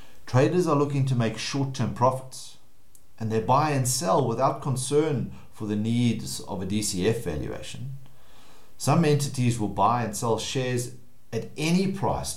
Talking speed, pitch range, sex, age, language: 150 wpm, 100-135 Hz, male, 50-69, English